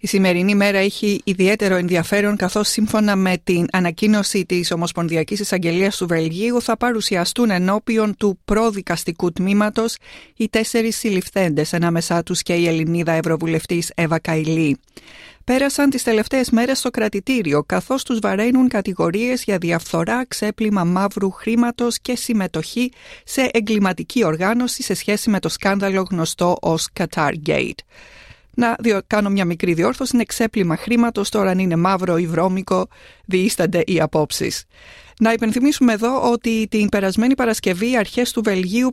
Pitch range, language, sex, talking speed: 180-235 Hz, Greek, female, 135 wpm